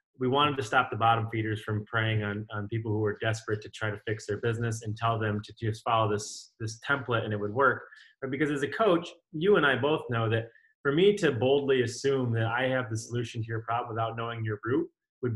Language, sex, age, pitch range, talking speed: English, male, 20-39, 110-140 Hz, 250 wpm